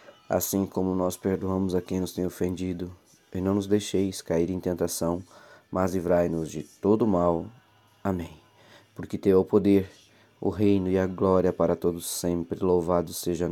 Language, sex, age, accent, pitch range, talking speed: Portuguese, male, 20-39, Brazilian, 90-100 Hz, 165 wpm